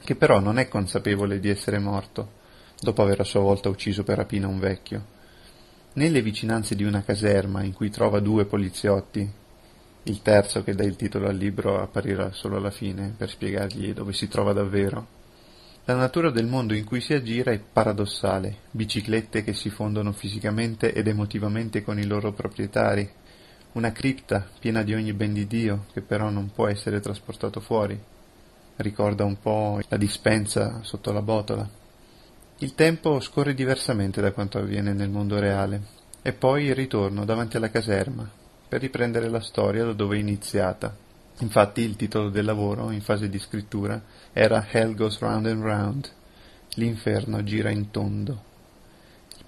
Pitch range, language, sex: 100-115 Hz, Italian, male